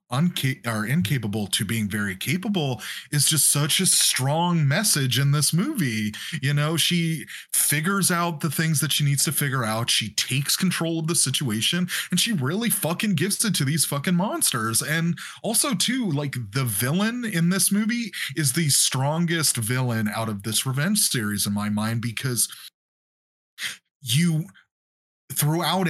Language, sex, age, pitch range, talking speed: English, male, 30-49, 115-165 Hz, 160 wpm